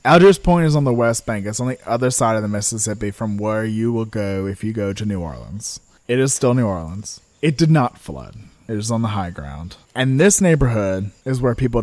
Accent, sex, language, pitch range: American, male, English, 105-145 Hz